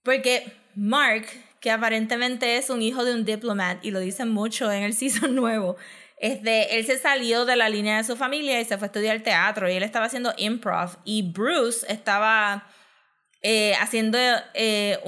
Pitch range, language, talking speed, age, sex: 205-250 Hz, Spanish, 185 wpm, 20-39, female